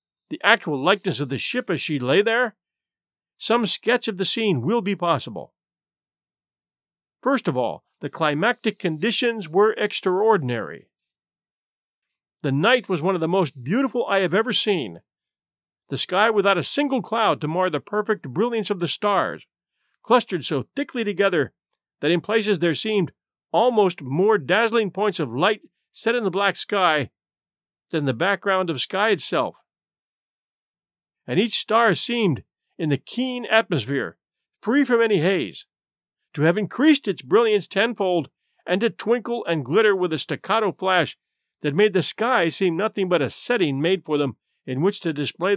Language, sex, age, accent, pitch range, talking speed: English, male, 50-69, American, 165-225 Hz, 160 wpm